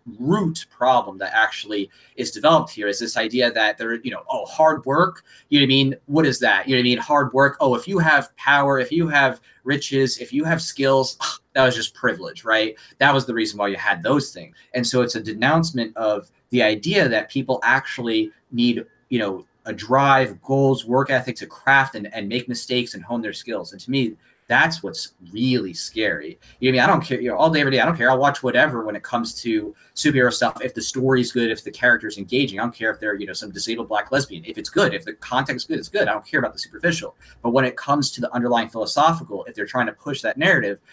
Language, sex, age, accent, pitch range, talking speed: English, male, 30-49, American, 115-135 Hz, 245 wpm